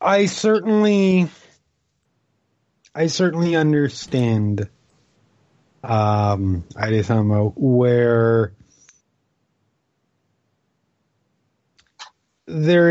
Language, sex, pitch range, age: English, male, 115-145 Hz, 30-49